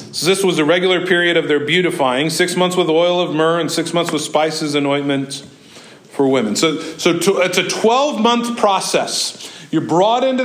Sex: male